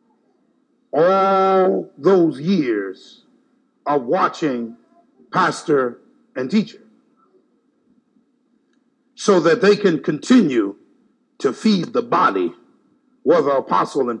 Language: English